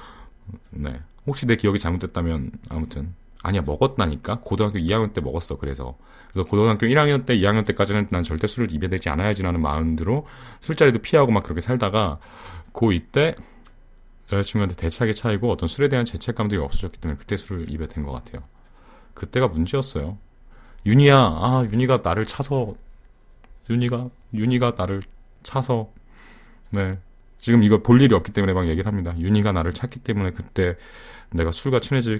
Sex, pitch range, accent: male, 85-120 Hz, native